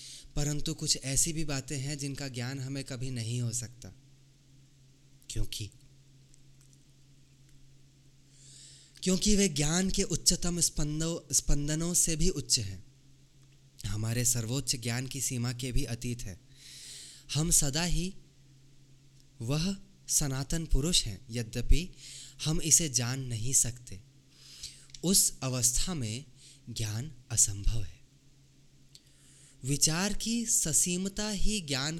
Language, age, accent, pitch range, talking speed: Hindi, 20-39, native, 130-150 Hz, 110 wpm